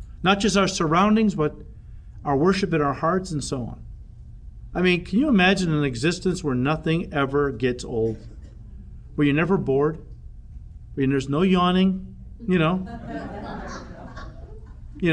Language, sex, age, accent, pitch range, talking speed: English, male, 50-69, American, 140-185 Hz, 145 wpm